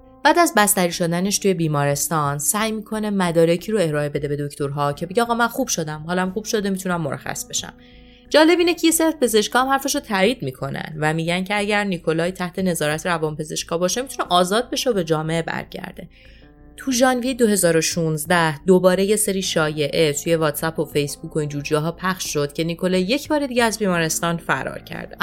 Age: 30-49